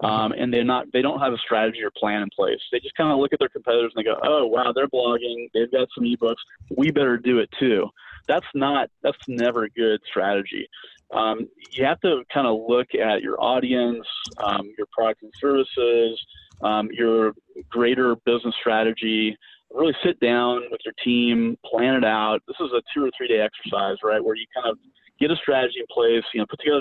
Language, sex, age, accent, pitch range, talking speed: English, male, 30-49, American, 110-145 Hz, 215 wpm